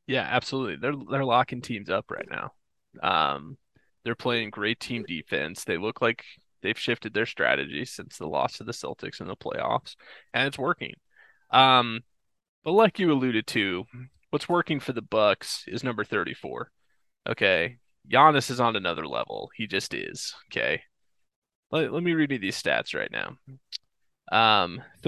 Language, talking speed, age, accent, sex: English, 165 wpm, 20-39, American, male